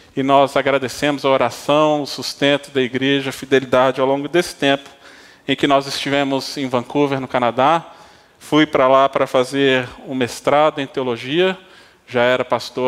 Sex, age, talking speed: male, 20-39, 165 wpm